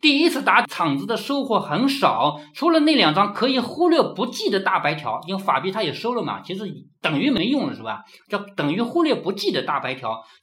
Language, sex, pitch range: Chinese, male, 180-300 Hz